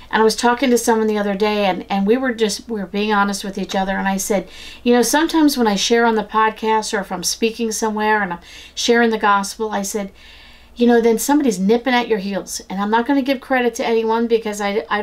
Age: 50-69